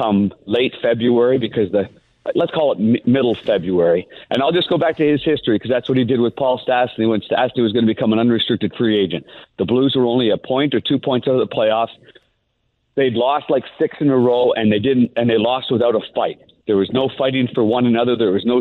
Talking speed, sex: 245 wpm, male